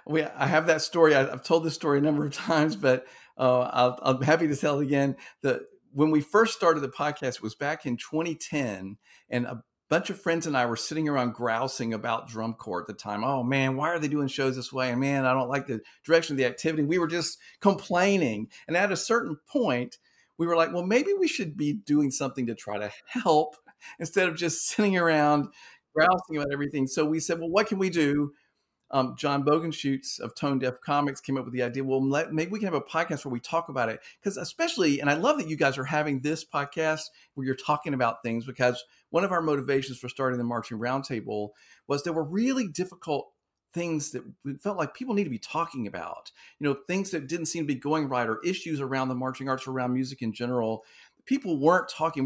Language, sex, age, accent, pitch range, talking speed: English, male, 50-69, American, 130-165 Hz, 230 wpm